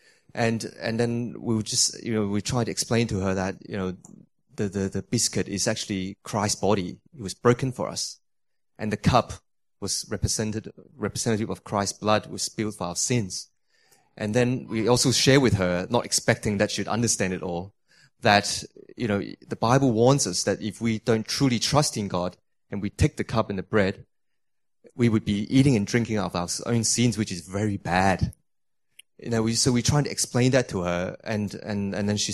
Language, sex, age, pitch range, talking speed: English, male, 20-39, 100-120 Hz, 205 wpm